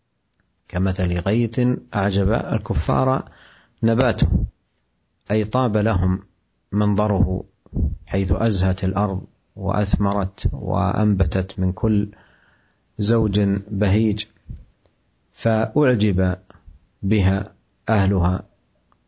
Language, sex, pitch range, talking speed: Malay, male, 95-105 Hz, 70 wpm